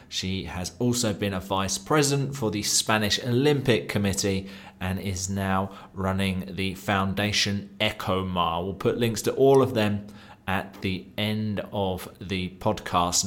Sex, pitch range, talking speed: male, 95-115 Hz, 145 wpm